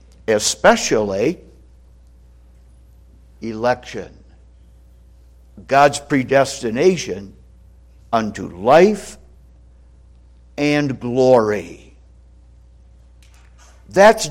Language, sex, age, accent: English, male, 60-79, American